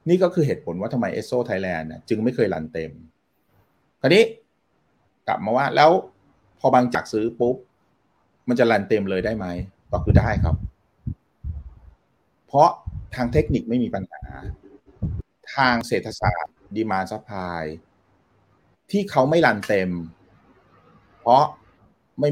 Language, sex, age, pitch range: Thai, male, 30-49, 90-115 Hz